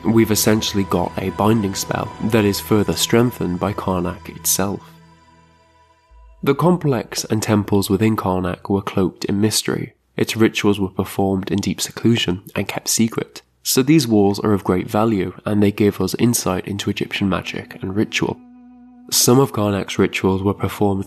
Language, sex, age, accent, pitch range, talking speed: English, male, 20-39, British, 95-110 Hz, 160 wpm